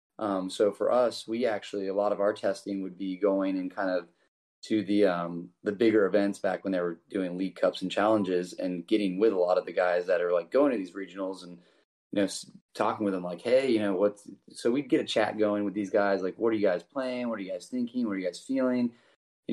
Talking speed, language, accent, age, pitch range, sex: 260 wpm, English, American, 30-49, 95-115 Hz, male